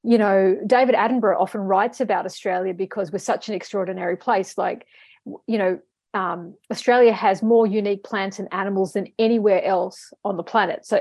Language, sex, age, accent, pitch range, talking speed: English, female, 40-59, Australian, 195-235 Hz, 175 wpm